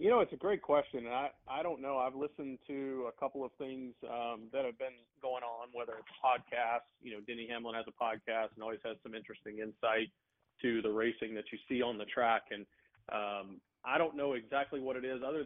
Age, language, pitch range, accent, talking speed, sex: 40-59, English, 110-135 Hz, American, 230 wpm, male